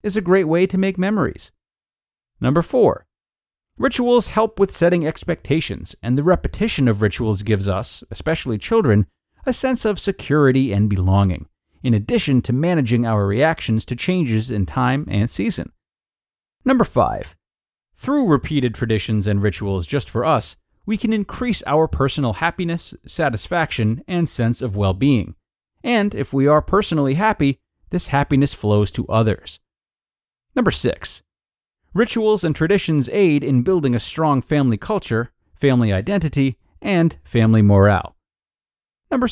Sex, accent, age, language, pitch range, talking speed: male, American, 40-59, English, 105-165 Hz, 140 wpm